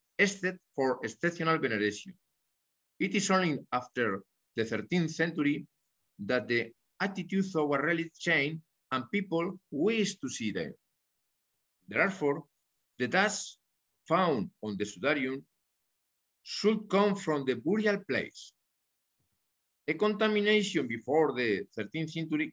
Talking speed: 115 wpm